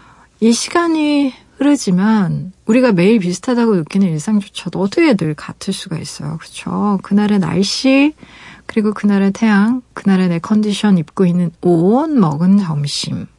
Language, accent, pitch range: Korean, native, 170-220 Hz